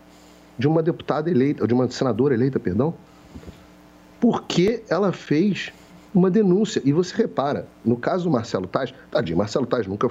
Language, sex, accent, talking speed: Portuguese, male, Brazilian, 155 wpm